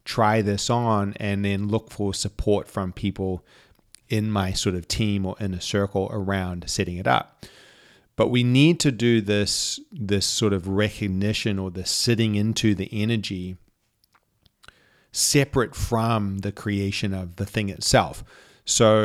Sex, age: male, 30-49